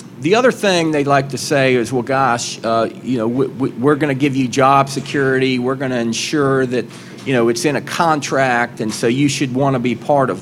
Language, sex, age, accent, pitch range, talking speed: English, male, 40-59, American, 120-150 Hz, 240 wpm